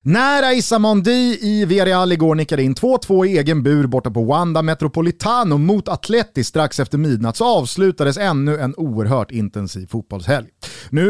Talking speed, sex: 145 wpm, male